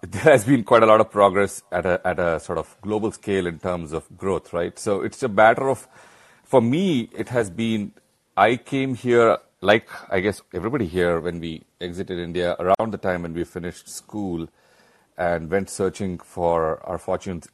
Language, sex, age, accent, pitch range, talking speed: English, male, 40-59, Indian, 85-110 Hz, 190 wpm